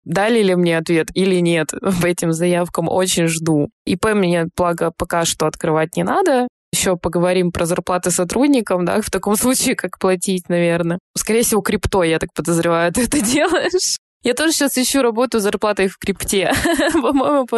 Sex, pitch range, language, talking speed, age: female, 170-220 Hz, Russian, 175 wpm, 20-39